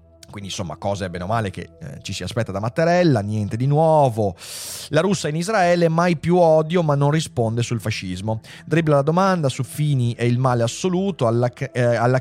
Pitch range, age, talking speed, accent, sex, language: 110-150 Hz, 30-49, 200 wpm, native, male, Italian